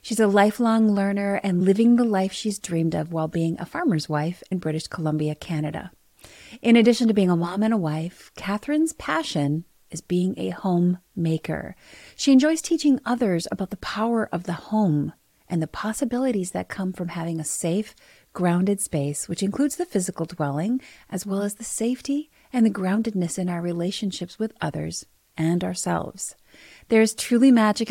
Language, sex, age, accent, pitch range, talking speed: English, female, 30-49, American, 165-225 Hz, 175 wpm